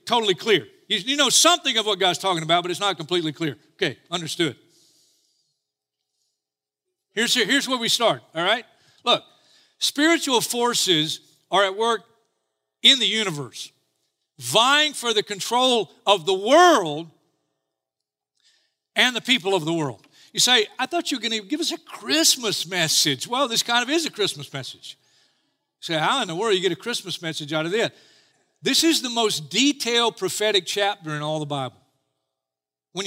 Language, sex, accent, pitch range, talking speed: English, male, American, 175-260 Hz, 170 wpm